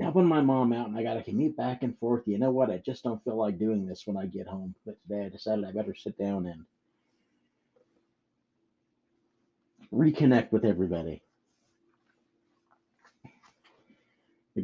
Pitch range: 95-115 Hz